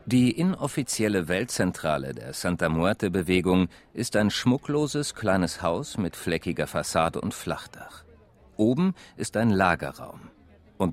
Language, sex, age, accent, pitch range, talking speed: German, male, 50-69, German, 85-125 Hz, 115 wpm